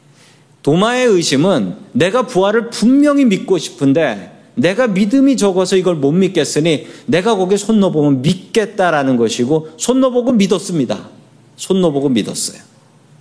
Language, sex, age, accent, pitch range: Korean, male, 40-59, native, 150-220 Hz